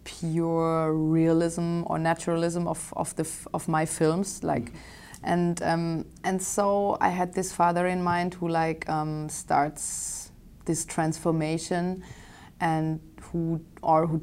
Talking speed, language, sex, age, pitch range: 135 wpm, English, female, 30-49, 155-180 Hz